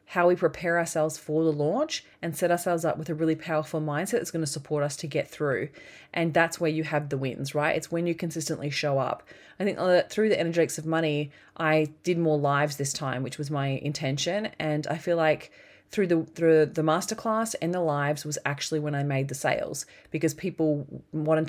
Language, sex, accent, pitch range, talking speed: English, female, Australian, 150-175 Hz, 215 wpm